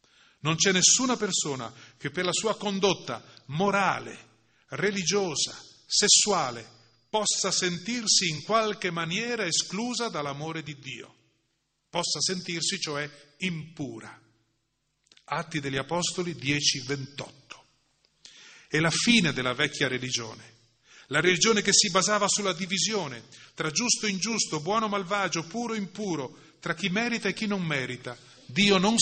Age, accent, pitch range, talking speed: 30-49, native, 140-195 Hz, 130 wpm